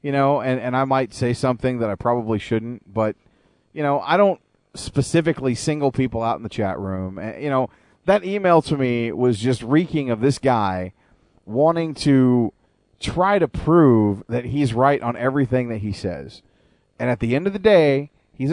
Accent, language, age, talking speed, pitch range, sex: American, English, 40-59, 195 wpm, 115-145 Hz, male